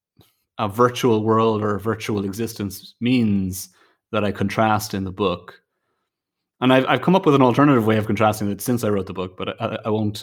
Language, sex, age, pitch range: English, male, 30-49, 95-115 Hz